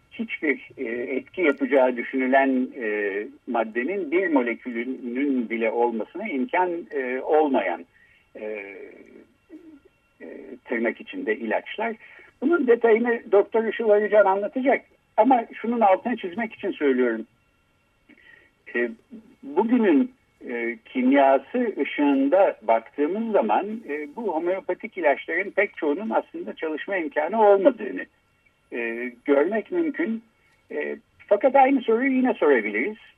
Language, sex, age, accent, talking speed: Turkish, male, 60-79, native, 85 wpm